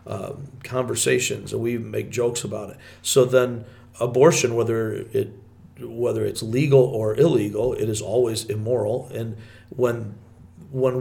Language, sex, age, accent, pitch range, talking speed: English, male, 50-69, American, 110-135 Hz, 135 wpm